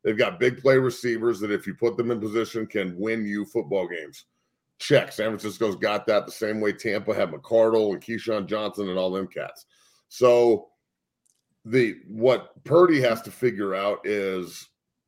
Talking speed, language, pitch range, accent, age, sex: 175 wpm, English, 105-135 Hz, American, 40-59, male